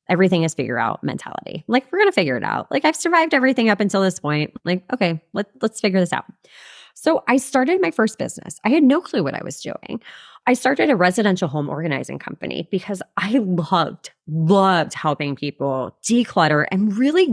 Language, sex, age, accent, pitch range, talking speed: English, female, 20-39, American, 160-250 Hz, 195 wpm